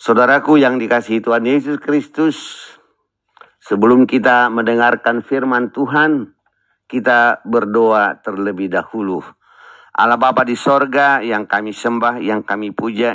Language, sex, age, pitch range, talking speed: Indonesian, male, 50-69, 105-135 Hz, 115 wpm